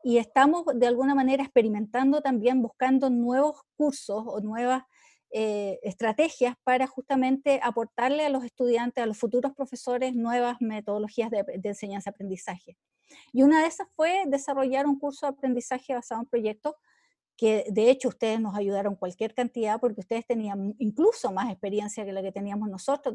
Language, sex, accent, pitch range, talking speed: Spanish, female, American, 215-275 Hz, 160 wpm